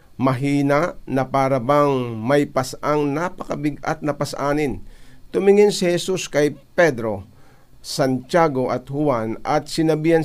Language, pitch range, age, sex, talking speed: Filipino, 135-165 Hz, 50-69, male, 105 wpm